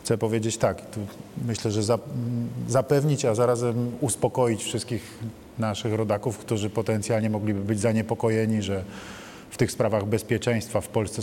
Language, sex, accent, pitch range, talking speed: Polish, male, native, 105-120 Hz, 130 wpm